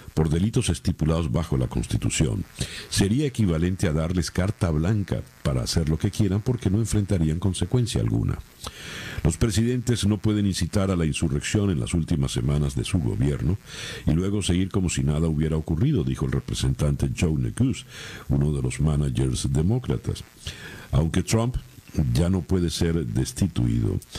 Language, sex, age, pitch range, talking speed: Spanish, male, 50-69, 80-110 Hz, 155 wpm